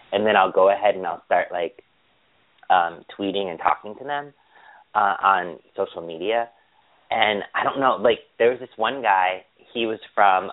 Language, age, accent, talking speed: English, 30-49, American, 180 wpm